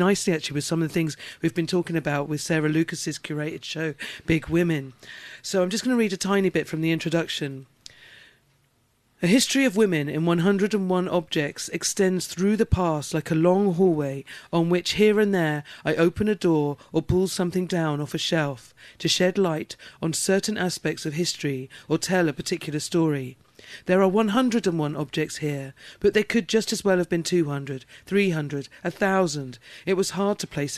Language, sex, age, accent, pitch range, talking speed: English, female, 40-59, British, 150-185 Hz, 195 wpm